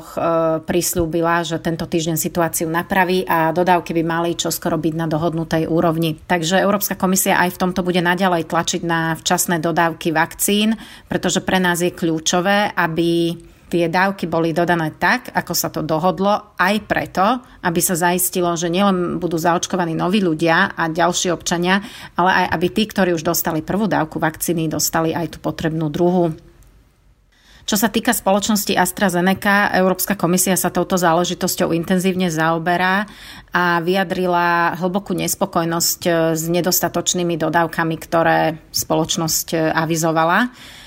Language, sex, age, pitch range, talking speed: Slovak, female, 30-49, 165-185 Hz, 140 wpm